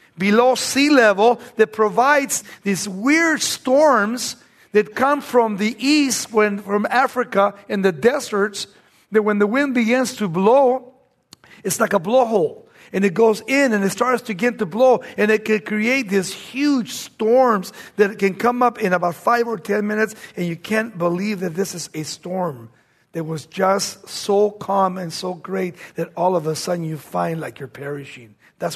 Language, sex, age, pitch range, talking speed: English, male, 50-69, 195-245 Hz, 180 wpm